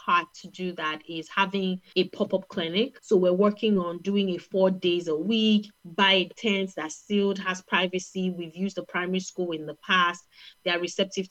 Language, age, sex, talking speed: English, 30-49, female, 200 wpm